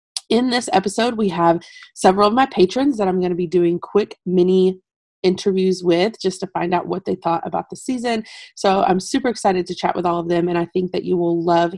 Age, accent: 30-49, American